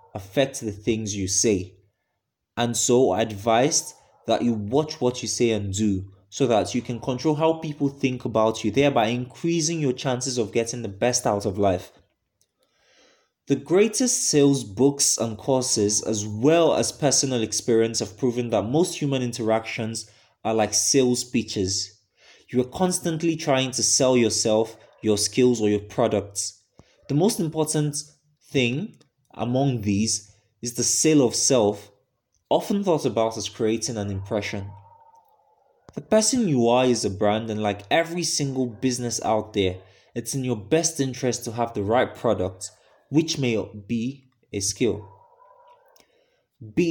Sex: male